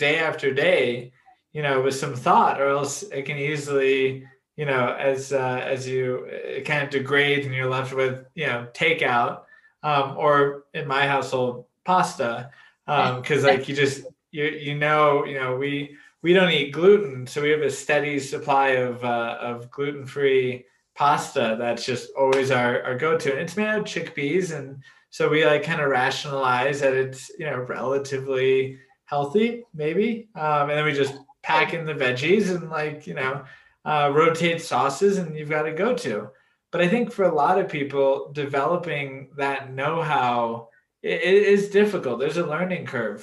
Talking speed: 175 wpm